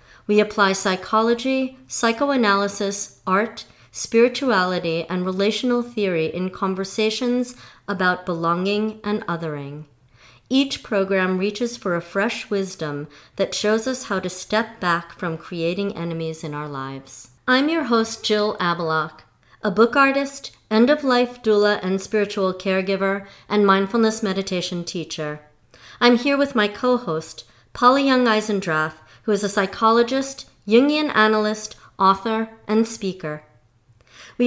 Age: 40-59